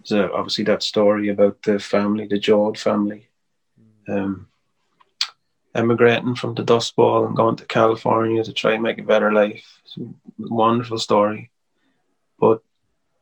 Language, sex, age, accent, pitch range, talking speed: English, male, 30-49, Irish, 105-120 Hz, 130 wpm